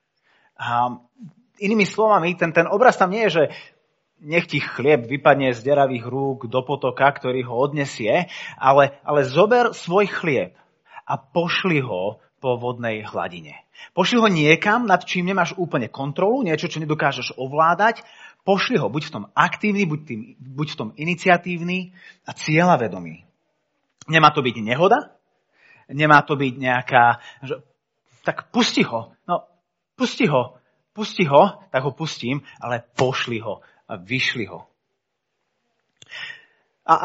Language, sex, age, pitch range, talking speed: Slovak, male, 30-49, 125-175 Hz, 135 wpm